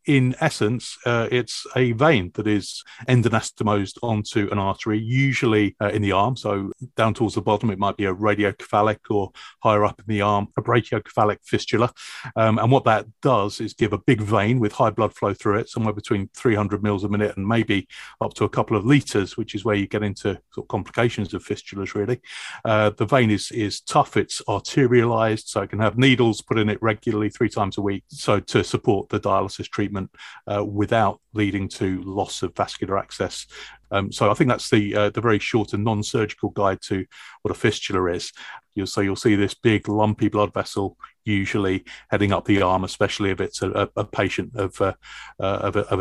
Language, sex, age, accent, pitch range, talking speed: English, male, 30-49, British, 100-115 Hz, 205 wpm